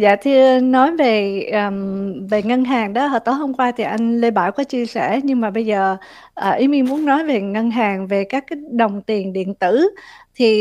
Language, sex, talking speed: Vietnamese, female, 225 wpm